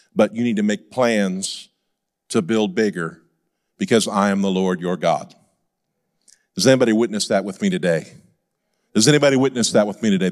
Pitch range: 115-150 Hz